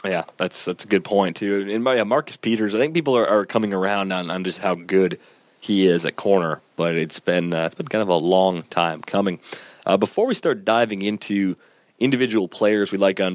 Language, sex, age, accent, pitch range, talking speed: English, male, 30-49, American, 90-105 Hz, 230 wpm